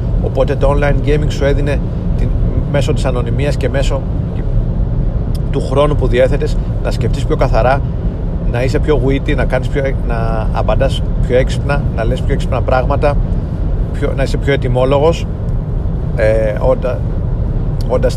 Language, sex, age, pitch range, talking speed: Greek, male, 40-59, 115-135 Hz, 140 wpm